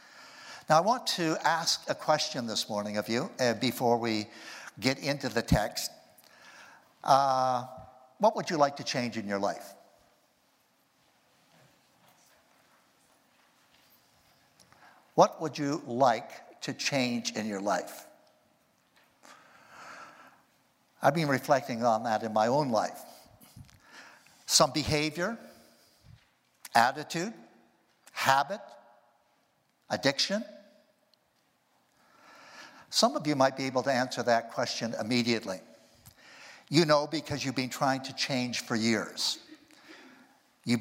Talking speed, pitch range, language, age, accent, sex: 105 wpm, 120-165 Hz, English, 60-79, American, male